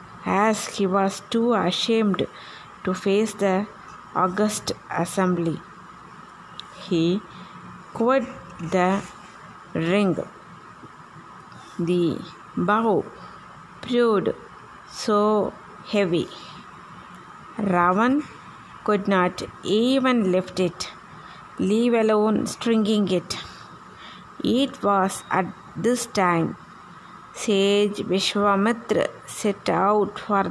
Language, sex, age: Tamil, female, 20-39